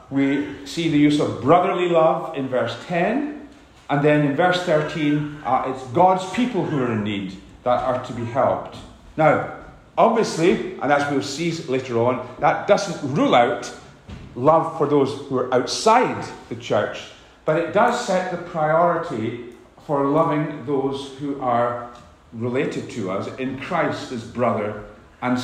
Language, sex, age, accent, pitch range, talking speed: English, male, 40-59, British, 130-185 Hz, 160 wpm